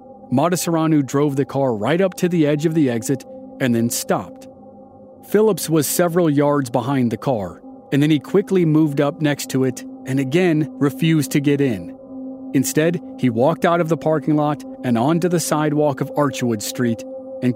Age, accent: 40-59, American